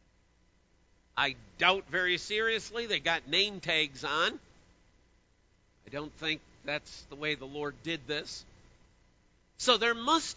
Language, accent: English, American